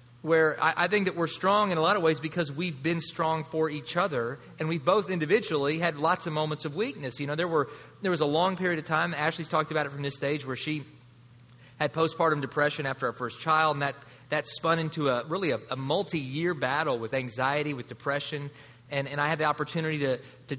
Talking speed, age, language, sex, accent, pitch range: 230 wpm, 30-49, English, male, American, 140-170 Hz